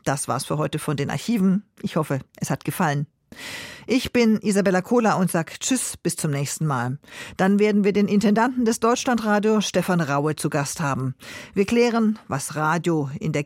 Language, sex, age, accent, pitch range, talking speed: German, female, 50-69, German, 155-205 Hz, 185 wpm